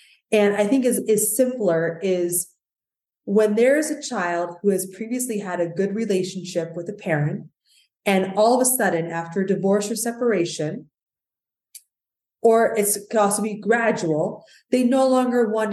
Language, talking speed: English, 160 wpm